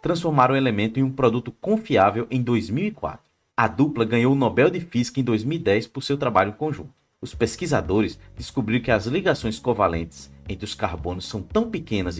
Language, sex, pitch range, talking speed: Portuguese, male, 110-150 Hz, 170 wpm